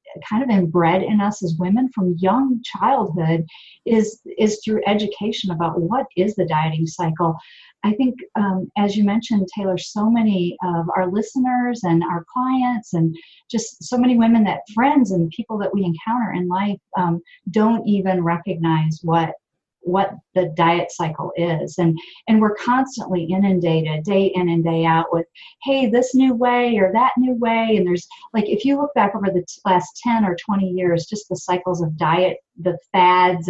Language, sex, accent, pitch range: English, female, American, 175-215 Hz